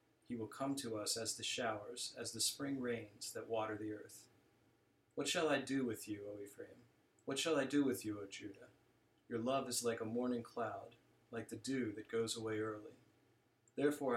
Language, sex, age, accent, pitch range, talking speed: English, male, 40-59, American, 110-130 Hz, 200 wpm